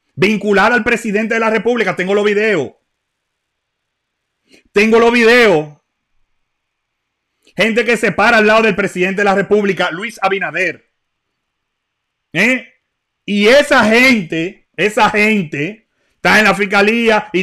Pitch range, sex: 170-225 Hz, male